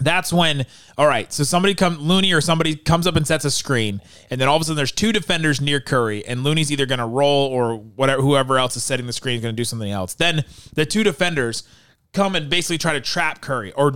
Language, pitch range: English, 125-165 Hz